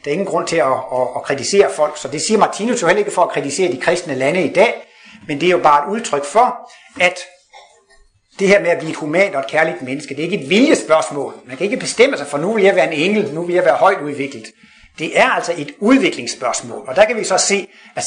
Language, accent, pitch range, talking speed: Danish, native, 155-210 Hz, 270 wpm